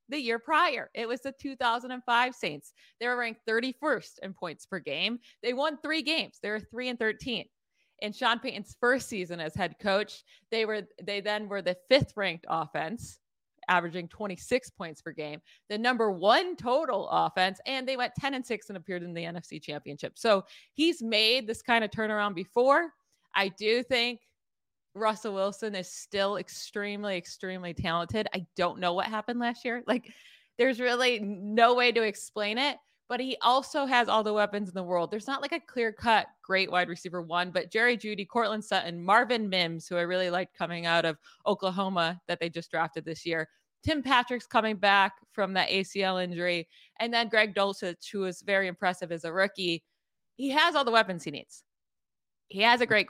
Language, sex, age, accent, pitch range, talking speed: English, female, 20-39, American, 180-240 Hz, 190 wpm